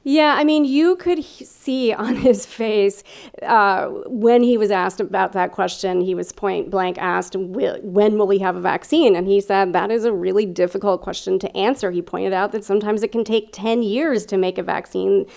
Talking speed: 205 wpm